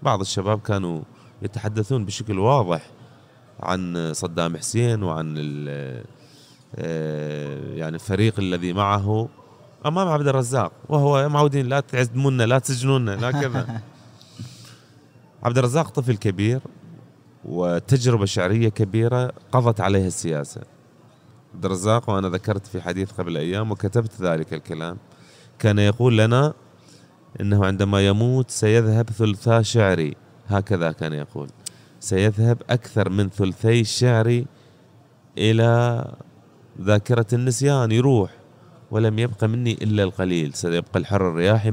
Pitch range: 95-120 Hz